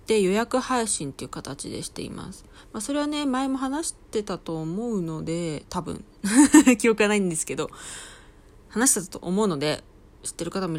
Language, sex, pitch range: Japanese, female, 160-235 Hz